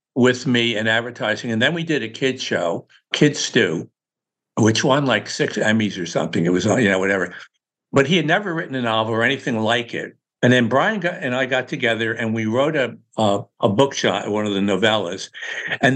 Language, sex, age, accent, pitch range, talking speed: English, male, 60-79, American, 110-140 Hz, 215 wpm